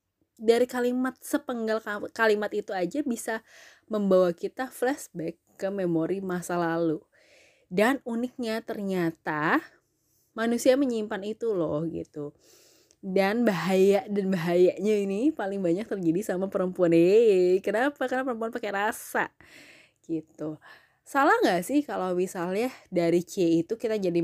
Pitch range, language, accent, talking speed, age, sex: 175-240 Hz, Indonesian, native, 120 wpm, 20-39, female